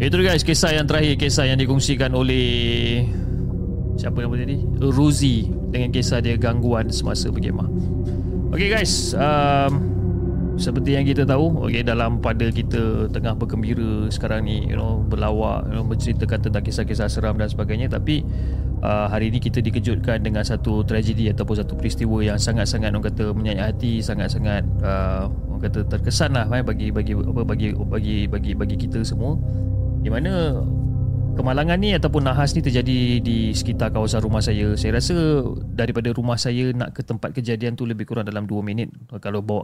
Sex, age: male, 20-39